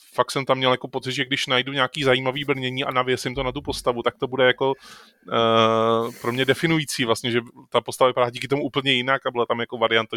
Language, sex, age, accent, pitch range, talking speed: Czech, male, 20-39, native, 115-135 Hz, 235 wpm